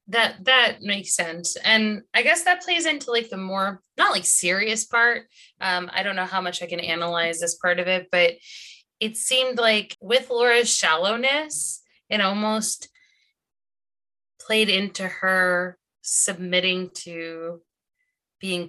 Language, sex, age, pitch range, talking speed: English, female, 20-39, 165-220 Hz, 145 wpm